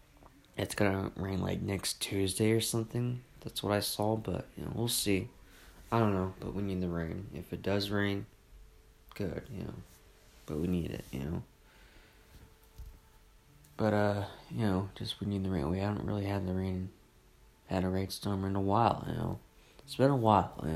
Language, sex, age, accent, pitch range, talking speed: English, male, 20-39, American, 90-110 Hz, 190 wpm